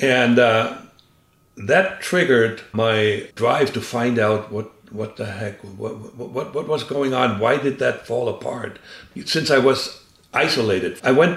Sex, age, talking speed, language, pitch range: male, 60-79, 160 wpm, English, 100-125 Hz